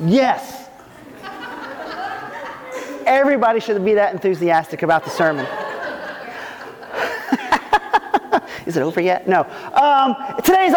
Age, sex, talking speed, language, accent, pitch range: 40-59, male, 90 wpm, English, American, 200-265 Hz